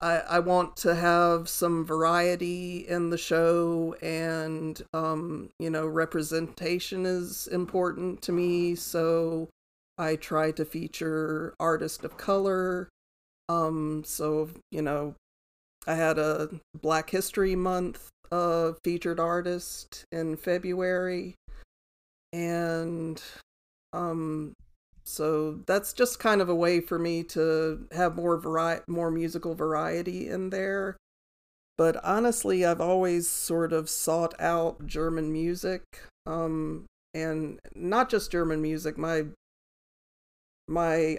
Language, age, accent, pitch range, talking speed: English, 50-69, American, 155-175 Hz, 115 wpm